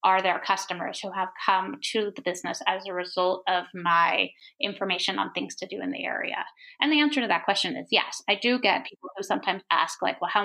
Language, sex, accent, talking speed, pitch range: English, female, American, 230 wpm, 190-245 Hz